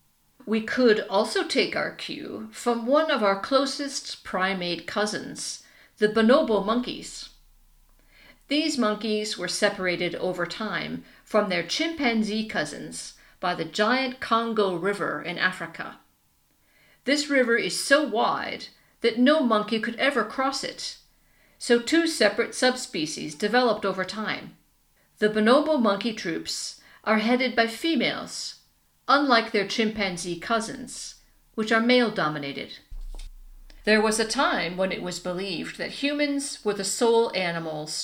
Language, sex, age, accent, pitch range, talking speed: English, female, 50-69, American, 195-250 Hz, 130 wpm